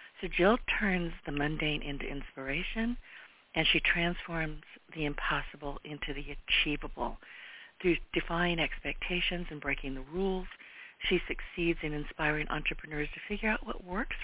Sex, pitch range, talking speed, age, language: female, 150-180 Hz, 135 wpm, 50-69, English